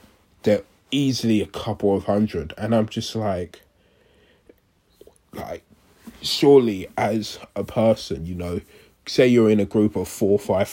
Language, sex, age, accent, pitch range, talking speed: English, male, 20-39, British, 95-110 Hz, 145 wpm